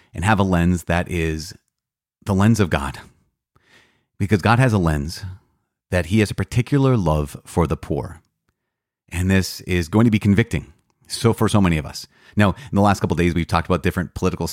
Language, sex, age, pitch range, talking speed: English, male, 30-49, 85-110 Hz, 200 wpm